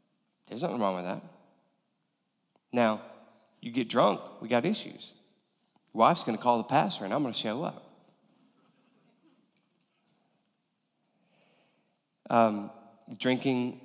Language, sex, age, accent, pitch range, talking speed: English, male, 30-49, American, 110-160 Hz, 105 wpm